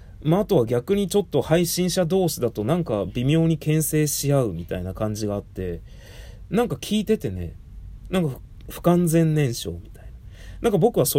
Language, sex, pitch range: Japanese, male, 100-160 Hz